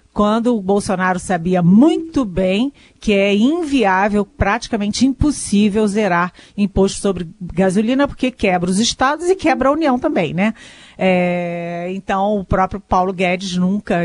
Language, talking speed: Portuguese, 130 wpm